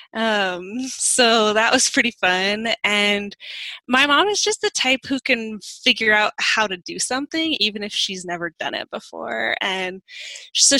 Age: 20-39